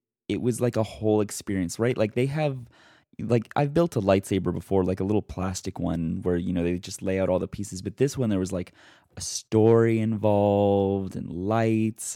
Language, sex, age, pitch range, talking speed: English, male, 20-39, 90-110 Hz, 205 wpm